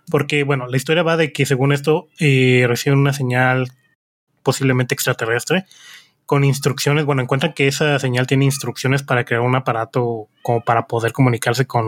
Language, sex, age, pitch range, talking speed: Spanish, male, 20-39, 125-150 Hz, 165 wpm